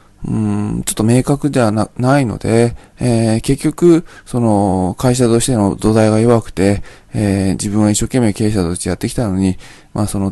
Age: 20-39